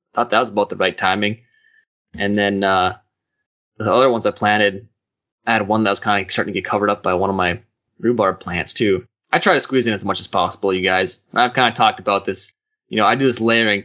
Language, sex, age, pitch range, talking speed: English, male, 20-39, 100-120 Hz, 250 wpm